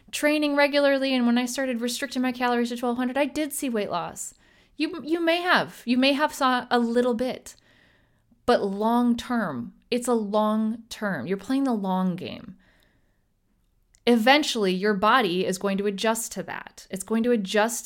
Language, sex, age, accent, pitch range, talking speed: English, female, 30-49, American, 185-240 Hz, 175 wpm